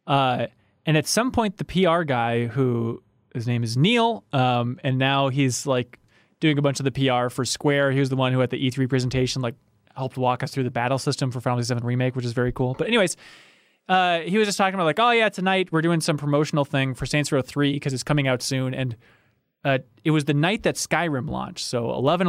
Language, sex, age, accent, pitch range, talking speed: English, male, 20-39, American, 125-155 Hz, 240 wpm